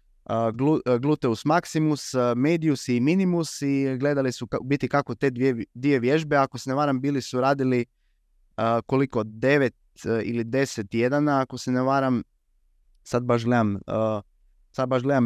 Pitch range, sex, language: 110-145 Hz, male, Croatian